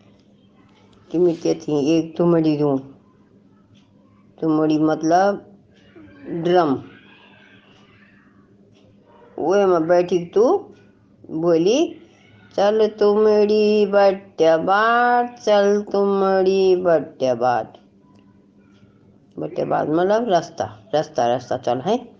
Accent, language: native, Hindi